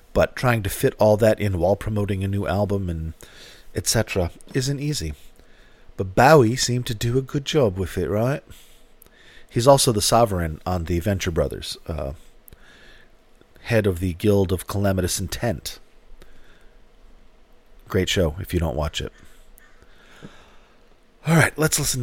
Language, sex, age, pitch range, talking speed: English, male, 40-59, 95-125 Hz, 145 wpm